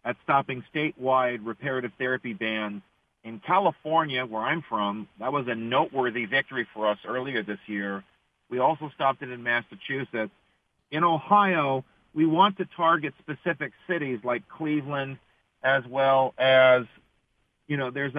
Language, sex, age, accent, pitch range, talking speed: English, male, 50-69, American, 125-150 Hz, 140 wpm